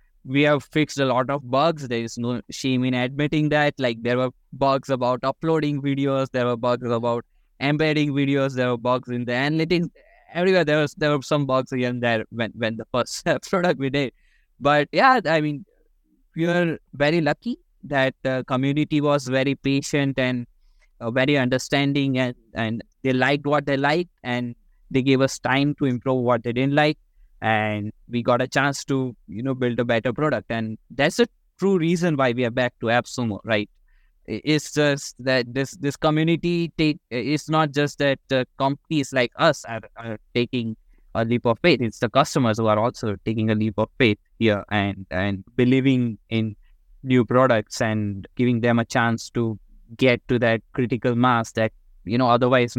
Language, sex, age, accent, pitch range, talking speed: English, male, 20-39, Indian, 115-145 Hz, 185 wpm